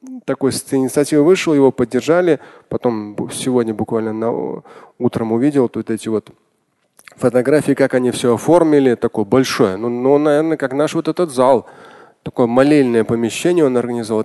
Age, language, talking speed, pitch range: 20-39, Russian, 140 wpm, 120-155 Hz